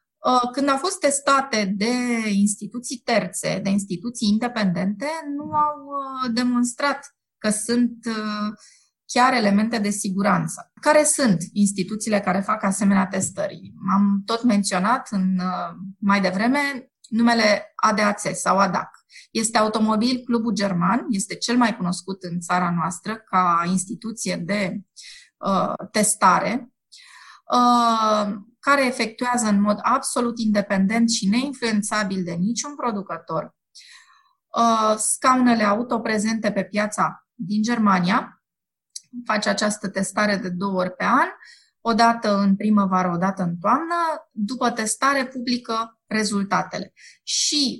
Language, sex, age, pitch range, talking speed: Romanian, female, 20-39, 200-245 Hz, 115 wpm